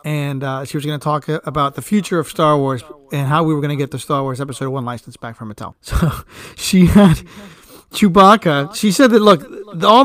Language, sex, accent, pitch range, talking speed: English, male, American, 145-175 Hz, 225 wpm